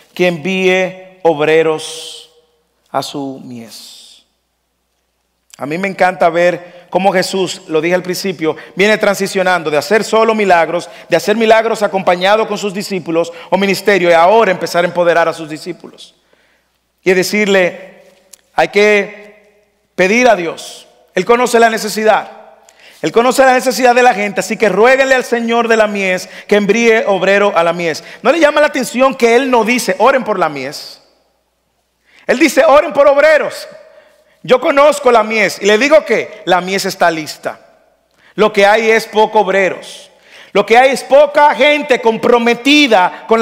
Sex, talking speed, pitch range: male, 160 wpm, 180-240 Hz